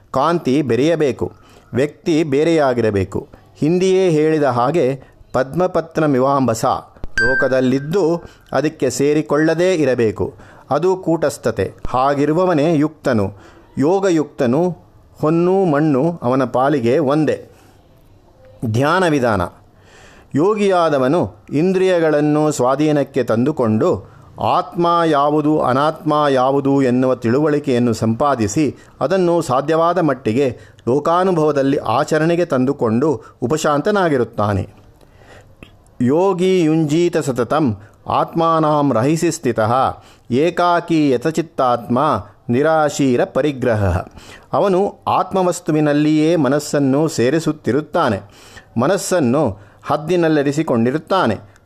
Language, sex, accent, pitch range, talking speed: Kannada, male, native, 120-165 Hz, 70 wpm